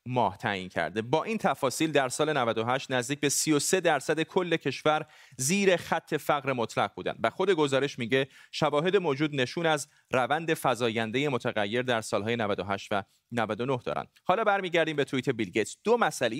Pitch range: 125-160 Hz